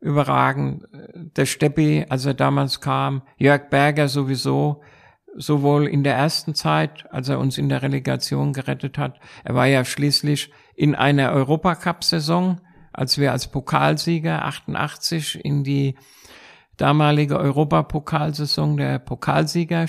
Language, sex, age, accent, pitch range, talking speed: German, male, 50-69, German, 130-155 Hz, 125 wpm